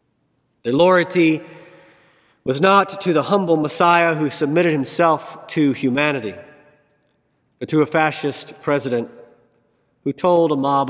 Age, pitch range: 50-69, 130-165 Hz